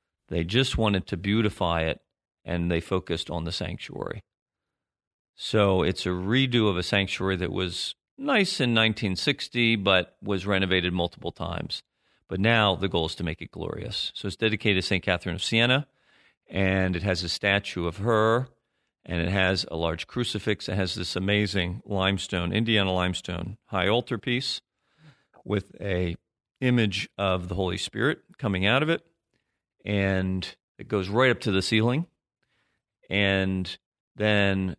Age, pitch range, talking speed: 40-59, 90-110 Hz, 155 wpm